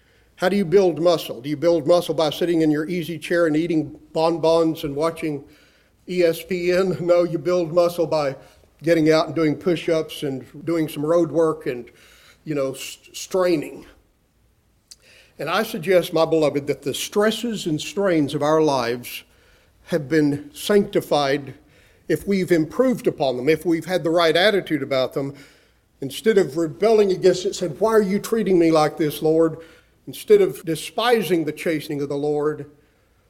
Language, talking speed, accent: English, 165 wpm, American